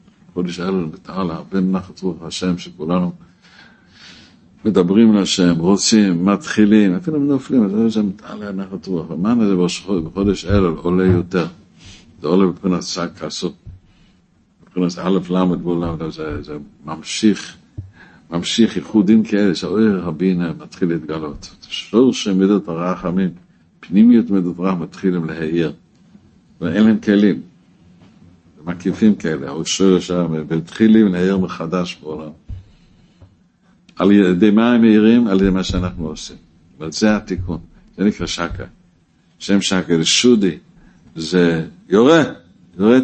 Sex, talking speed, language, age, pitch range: male, 120 wpm, Hebrew, 60-79, 90-110 Hz